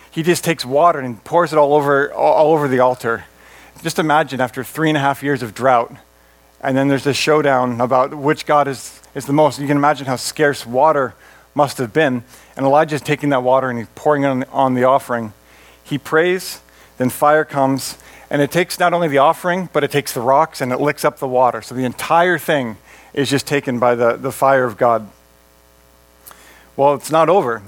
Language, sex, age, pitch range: English, male, 40-59, 125-155 Hz